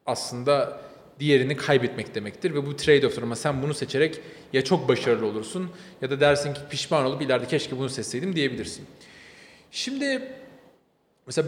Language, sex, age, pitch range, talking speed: Turkish, male, 40-59, 145-195 Hz, 150 wpm